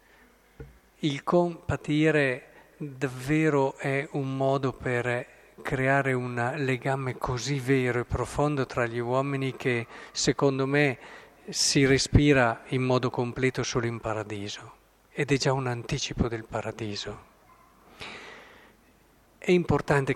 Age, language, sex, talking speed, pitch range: 50-69, Italian, male, 110 wpm, 120-145 Hz